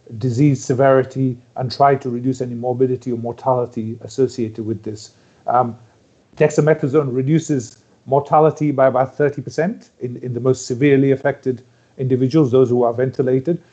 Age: 40-59